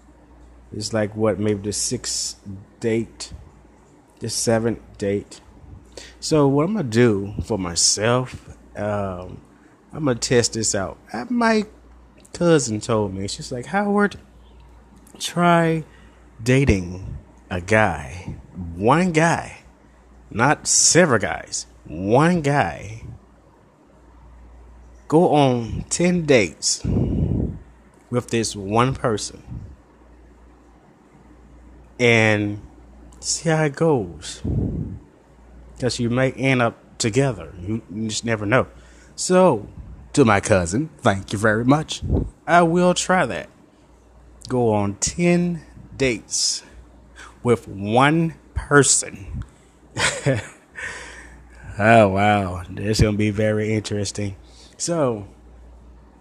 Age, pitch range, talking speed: 30-49, 75-125 Hz, 100 wpm